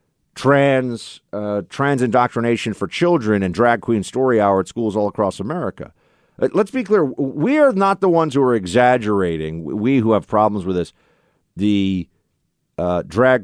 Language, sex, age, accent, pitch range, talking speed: English, male, 50-69, American, 105-175 Hz, 160 wpm